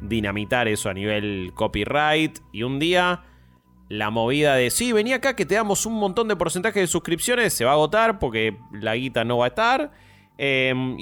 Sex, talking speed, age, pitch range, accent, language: male, 195 wpm, 20-39, 105-150 Hz, Argentinian, Spanish